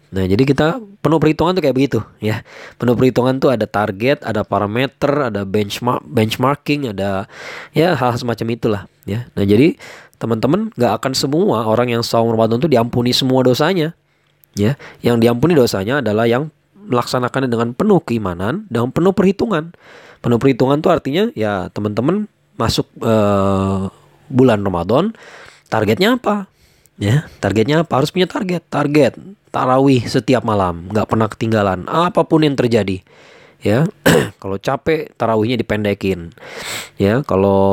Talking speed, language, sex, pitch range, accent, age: 140 wpm, Indonesian, male, 105-150 Hz, native, 20-39